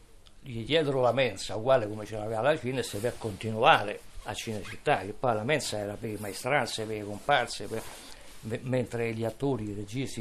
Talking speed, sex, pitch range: 190 wpm, male, 100-130 Hz